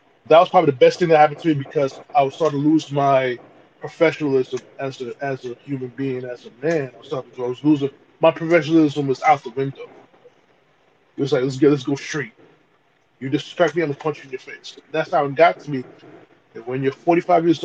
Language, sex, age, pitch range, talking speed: English, male, 20-39, 140-180 Hz, 230 wpm